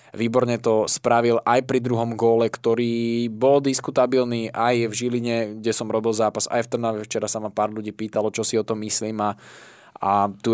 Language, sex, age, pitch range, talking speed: Slovak, male, 20-39, 110-125 Hz, 195 wpm